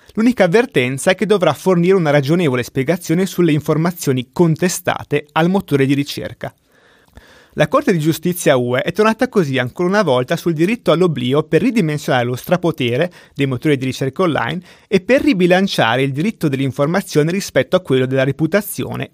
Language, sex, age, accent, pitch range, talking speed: Italian, male, 30-49, native, 135-180 Hz, 155 wpm